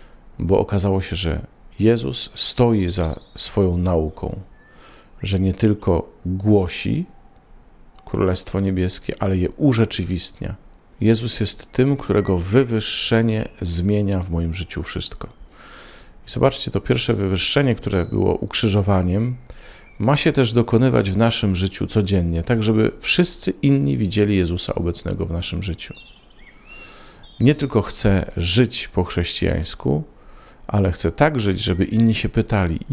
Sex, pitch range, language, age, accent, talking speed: male, 90-110 Hz, Polish, 40-59, native, 125 wpm